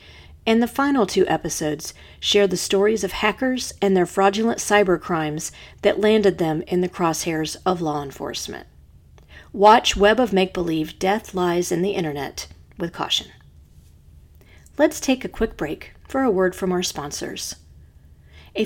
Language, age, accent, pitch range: English, 40-59, American, 160-210 Hz